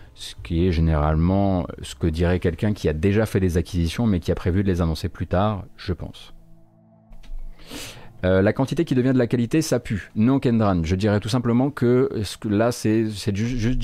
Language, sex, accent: French, male, French